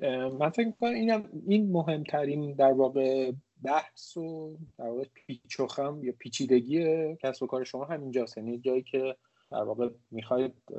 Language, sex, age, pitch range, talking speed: Persian, male, 30-49, 115-140 Hz, 145 wpm